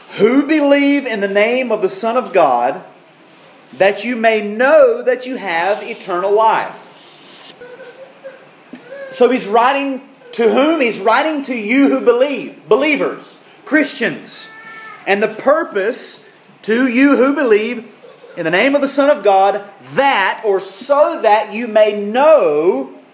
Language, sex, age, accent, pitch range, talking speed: English, male, 30-49, American, 210-275 Hz, 140 wpm